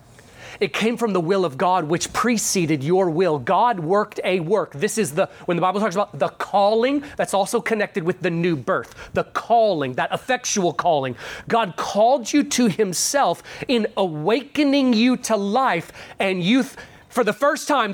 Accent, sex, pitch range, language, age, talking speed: American, male, 155-230 Hz, English, 30-49, 175 wpm